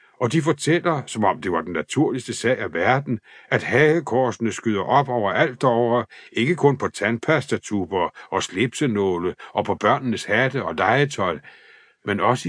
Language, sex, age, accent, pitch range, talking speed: Danish, male, 60-79, native, 115-150 Hz, 160 wpm